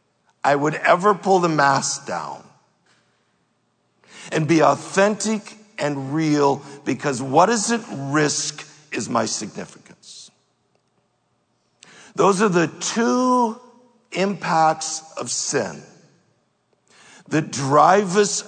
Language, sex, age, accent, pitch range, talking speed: English, male, 60-79, American, 150-200 Hz, 95 wpm